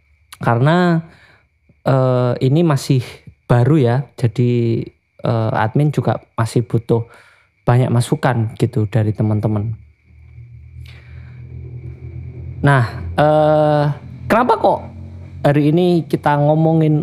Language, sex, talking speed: Indonesian, male, 90 wpm